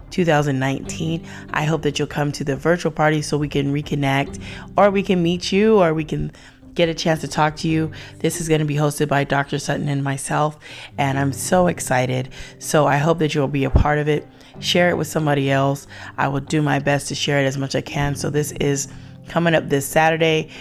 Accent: American